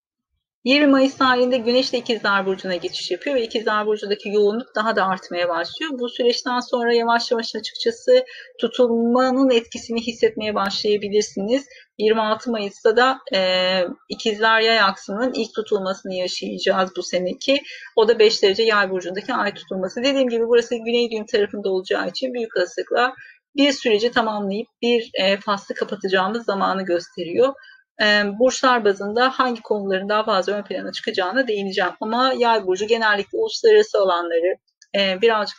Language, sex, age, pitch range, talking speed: Turkish, female, 40-59, 200-260 Hz, 140 wpm